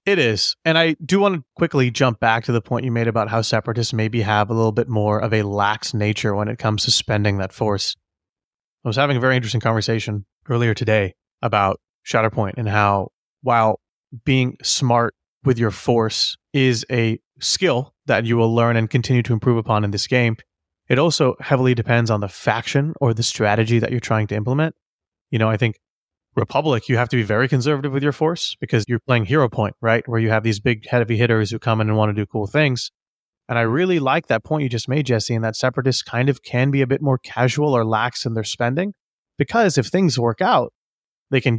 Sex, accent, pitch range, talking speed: male, American, 110-135 Hz, 220 wpm